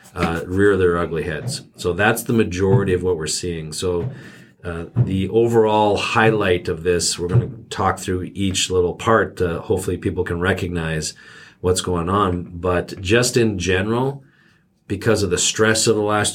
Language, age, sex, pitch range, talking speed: English, 40-59, male, 90-100 Hz, 175 wpm